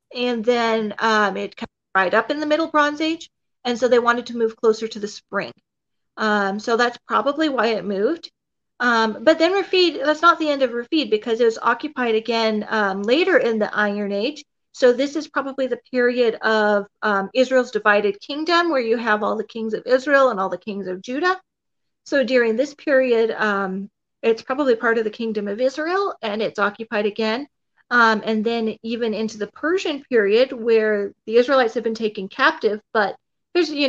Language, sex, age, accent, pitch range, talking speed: English, female, 40-59, American, 220-275 Hz, 195 wpm